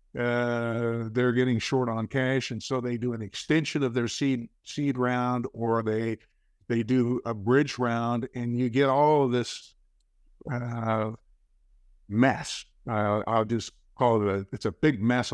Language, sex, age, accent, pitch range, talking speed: English, male, 60-79, American, 105-130 Hz, 170 wpm